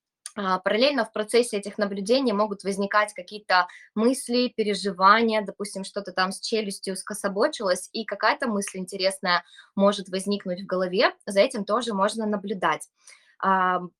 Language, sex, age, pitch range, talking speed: Russian, female, 20-39, 190-220 Hz, 125 wpm